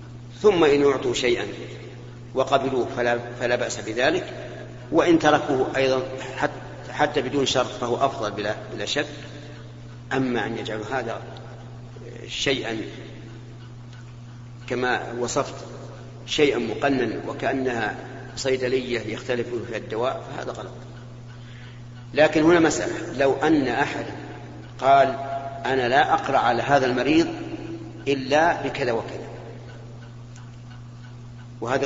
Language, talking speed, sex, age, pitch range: Arabic, 100 wpm, male, 50-69, 120-135 Hz